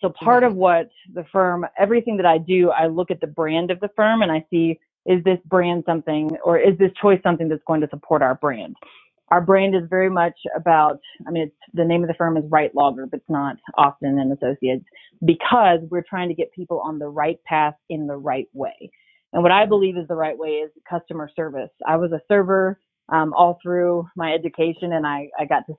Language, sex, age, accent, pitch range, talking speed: English, female, 30-49, American, 155-190 Hz, 230 wpm